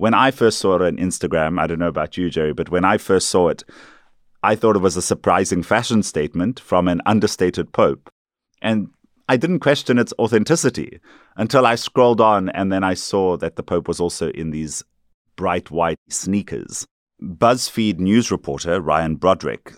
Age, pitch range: 30-49, 85-105 Hz